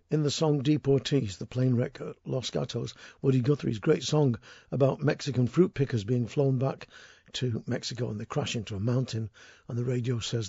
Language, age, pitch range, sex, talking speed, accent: English, 60-79, 120-145 Hz, male, 190 wpm, British